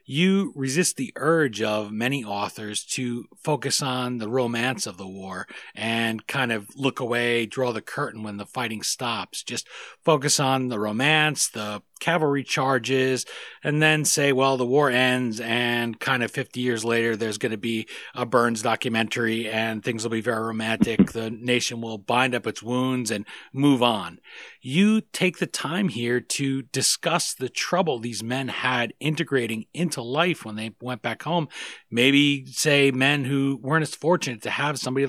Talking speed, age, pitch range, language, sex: 175 wpm, 40-59, 115-145 Hz, English, male